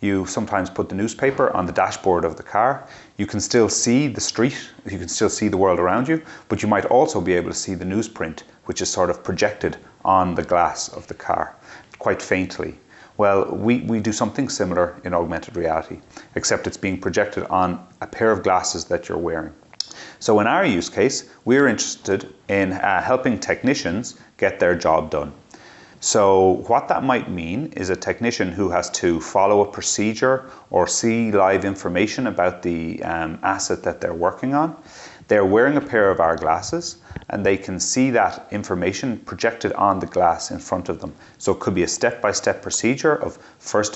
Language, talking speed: English, 195 wpm